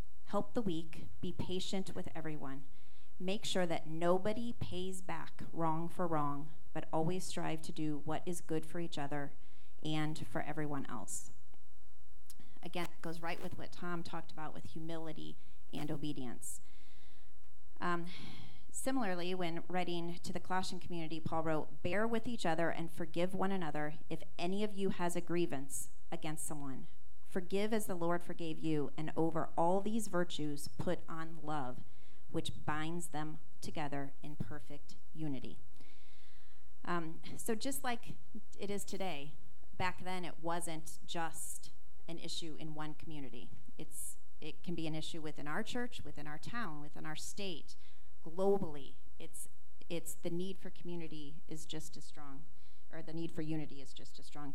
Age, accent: 30-49, American